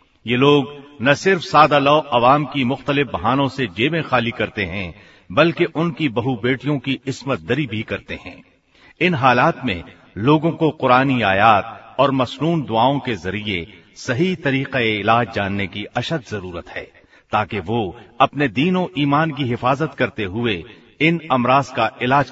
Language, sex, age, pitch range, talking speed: Hindi, male, 50-69, 110-145 Hz, 155 wpm